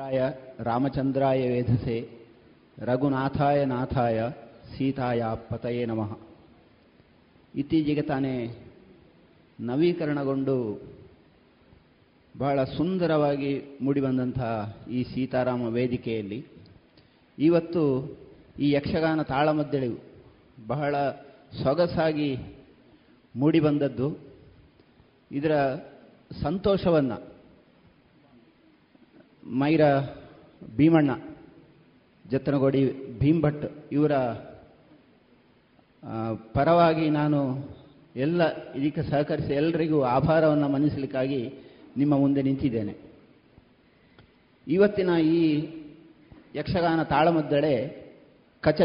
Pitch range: 125-150 Hz